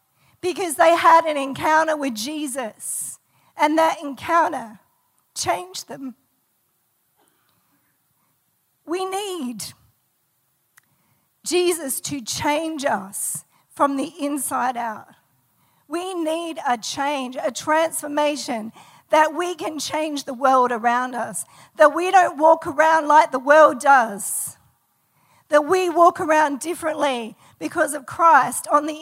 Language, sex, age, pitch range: English, female, 50-69, 240-310 Hz